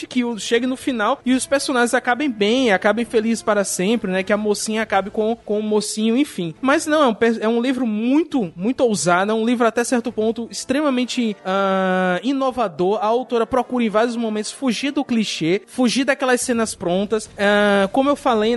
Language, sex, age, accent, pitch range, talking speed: Portuguese, male, 20-39, Brazilian, 210-260 Hz, 190 wpm